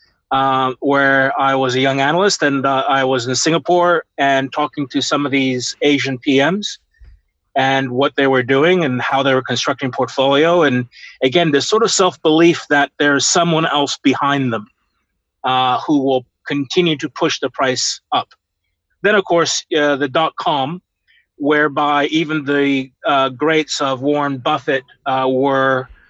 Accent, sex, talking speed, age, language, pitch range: American, male, 160 wpm, 30-49, English, 135-160 Hz